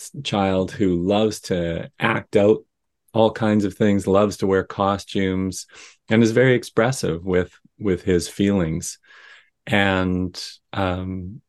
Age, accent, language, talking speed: 40-59, American, English, 125 wpm